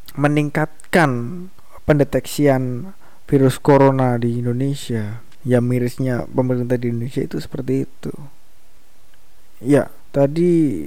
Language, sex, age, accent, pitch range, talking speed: Indonesian, male, 20-39, native, 125-155 Hz, 90 wpm